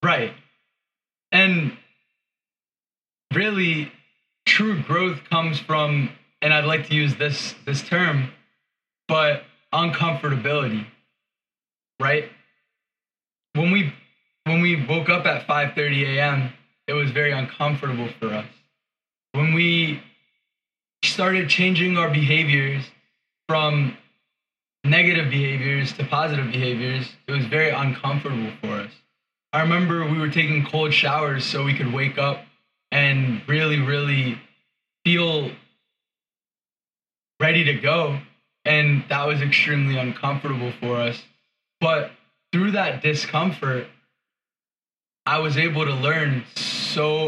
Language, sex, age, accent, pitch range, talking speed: English, male, 20-39, American, 140-160 Hz, 110 wpm